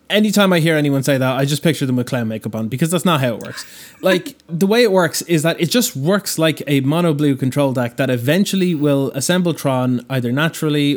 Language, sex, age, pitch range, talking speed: English, male, 20-39, 125-155 Hz, 235 wpm